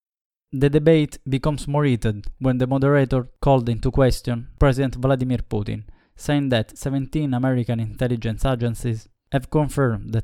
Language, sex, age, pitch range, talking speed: English, male, 20-39, 115-140 Hz, 135 wpm